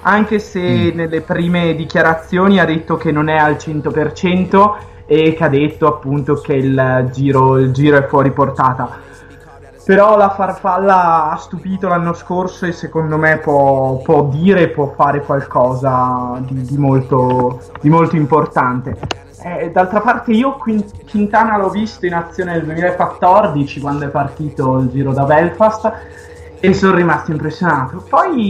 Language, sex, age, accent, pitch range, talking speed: Italian, male, 20-39, native, 140-185 Hz, 140 wpm